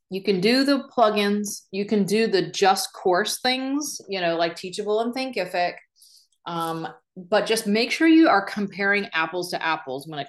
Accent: American